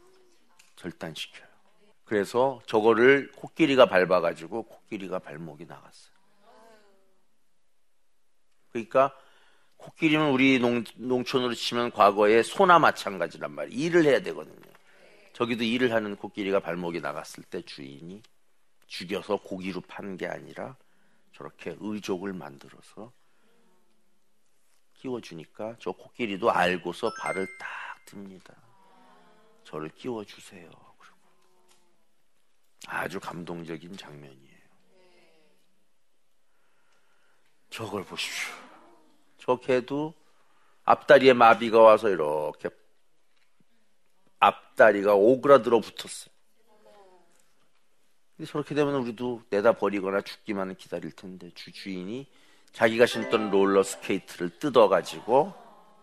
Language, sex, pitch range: Korean, male, 95-155 Hz